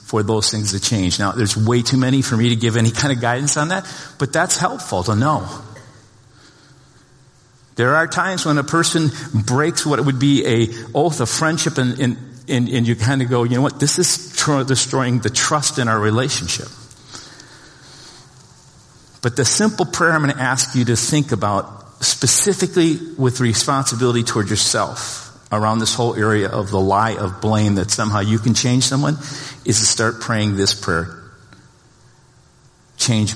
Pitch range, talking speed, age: 110-135 Hz, 175 wpm, 50-69